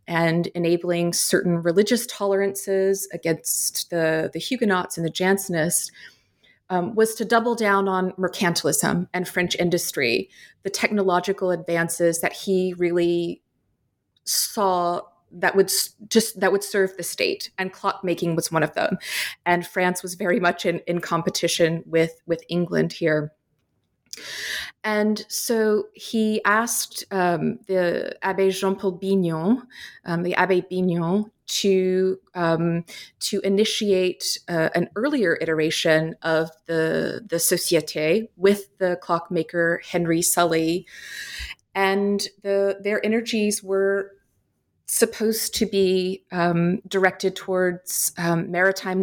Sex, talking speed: female, 120 wpm